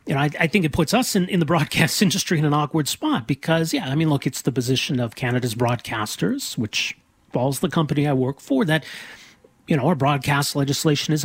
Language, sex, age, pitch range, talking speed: English, male, 40-59, 135-195 Hz, 225 wpm